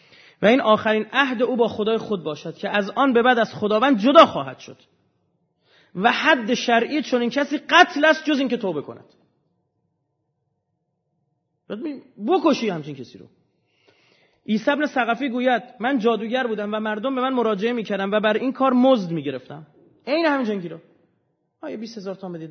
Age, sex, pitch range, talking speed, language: 30-49, male, 175-260 Hz, 165 wpm, Persian